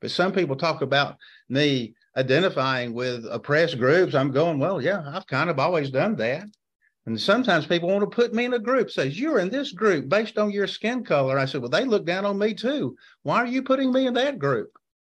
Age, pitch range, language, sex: 50-69, 130-185 Hz, English, male